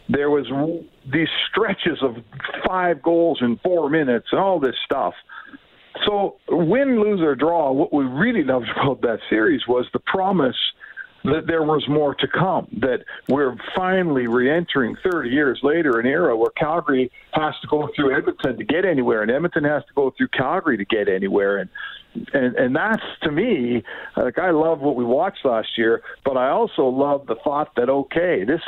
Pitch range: 125-165 Hz